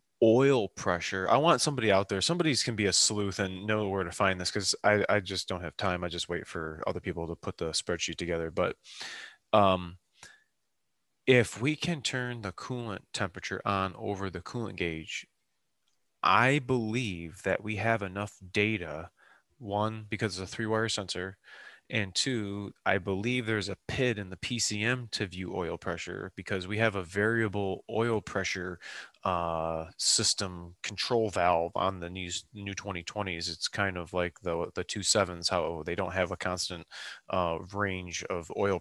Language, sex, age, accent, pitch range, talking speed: English, male, 20-39, American, 90-115 Hz, 170 wpm